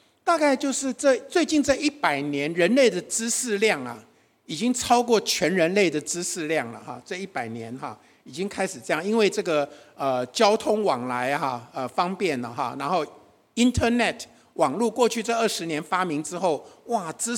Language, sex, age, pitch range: Chinese, male, 50-69, 180-255 Hz